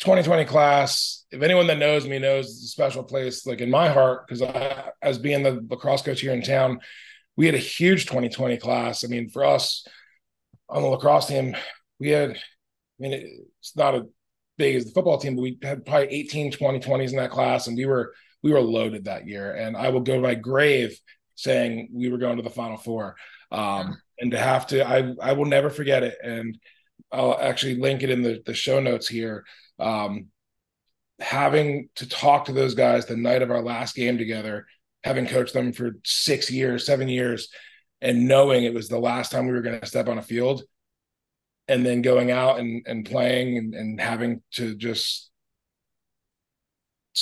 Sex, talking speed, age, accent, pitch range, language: male, 200 wpm, 20-39, American, 120-135 Hz, English